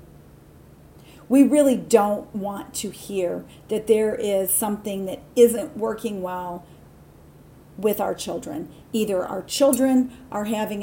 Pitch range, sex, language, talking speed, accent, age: 195-245 Hz, female, English, 120 wpm, American, 40-59